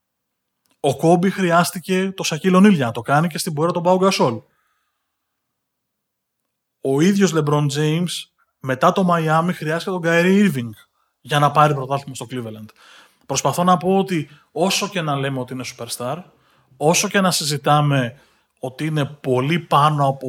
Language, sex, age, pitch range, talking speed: Greek, male, 20-39, 130-175 Hz, 150 wpm